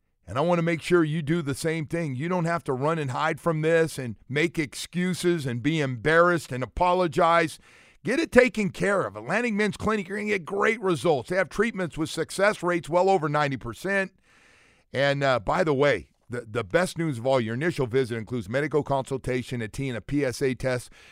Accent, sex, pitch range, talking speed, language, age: American, male, 135-175 Hz, 210 wpm, English, 50-69